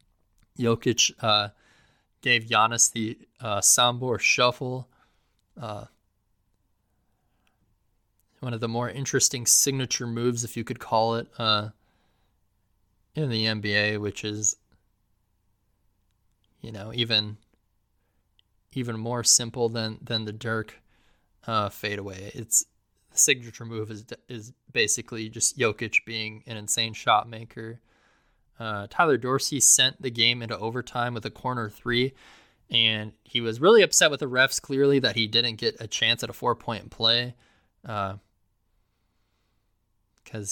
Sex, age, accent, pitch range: male, 20-39, American, 100-120 Hz